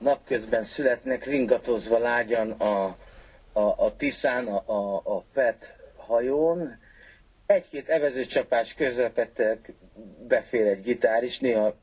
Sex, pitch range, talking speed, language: male, 110-175 Hz, 105 wpm, Hungarian